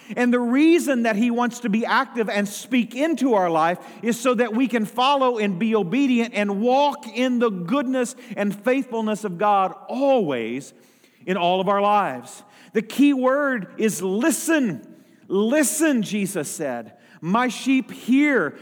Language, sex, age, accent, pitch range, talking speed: English, male, 40-59, American, 185-235 Hz, 160 wpm